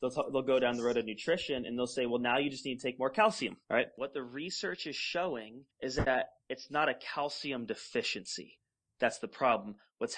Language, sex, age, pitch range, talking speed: English, male, 20-39, 115-145 Hz, 230 wpm